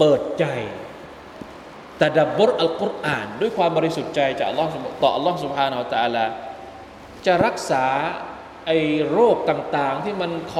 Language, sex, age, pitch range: Thai, male, 20-39, 135-185 Hz